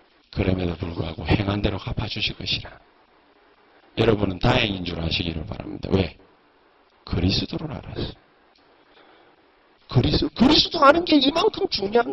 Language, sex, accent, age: Korean, male, native, 40-59